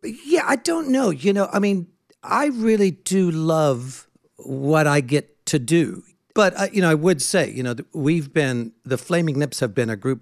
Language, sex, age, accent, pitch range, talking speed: English, male, 60-79, American, 130-175 Hz, 200 wpm